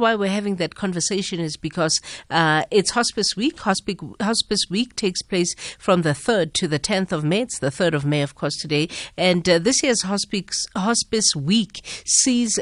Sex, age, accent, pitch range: female, 50-69, South African, 145-185 Hz